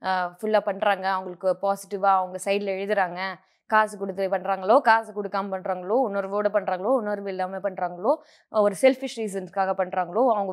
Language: Tamil